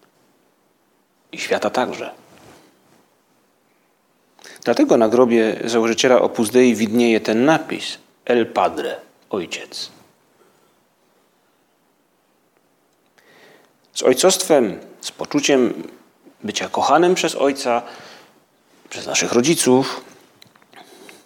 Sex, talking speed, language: male, 70 wpm, Polish